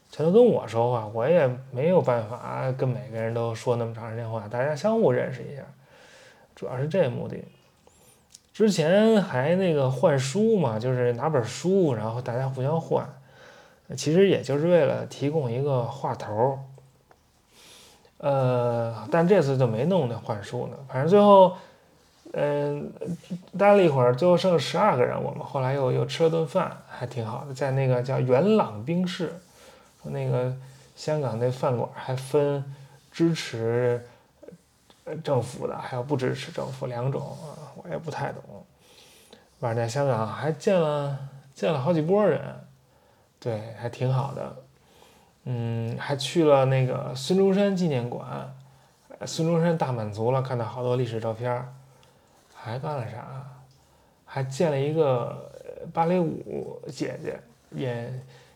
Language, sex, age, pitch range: English, male, 20-39, 125-165 Hz